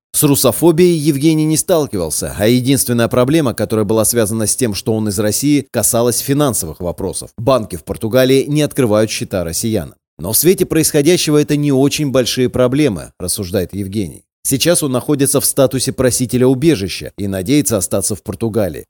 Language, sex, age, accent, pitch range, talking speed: Russian, male, 30-49, native, 105-140 Hz, 160 wpm